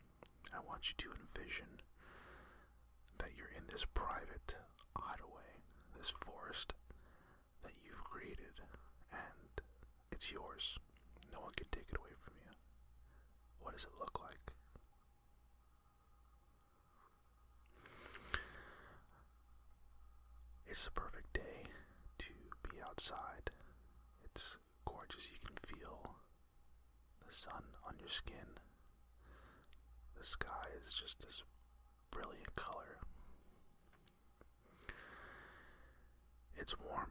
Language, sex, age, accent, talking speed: English, male, 40-59, American, 95 wpm